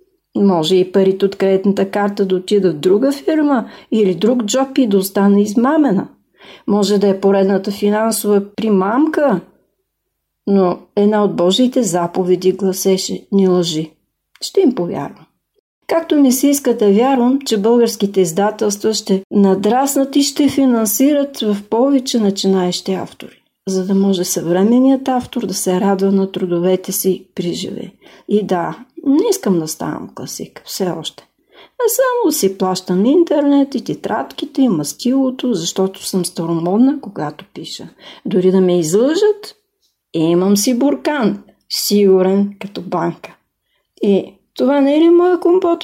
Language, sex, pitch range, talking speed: English, female, 190-275 Hz, 135 wpm